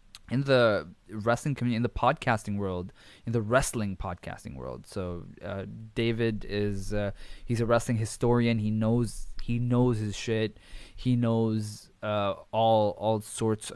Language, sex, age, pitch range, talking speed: English, male, 20-39, 100-120 Hz, 150 wpm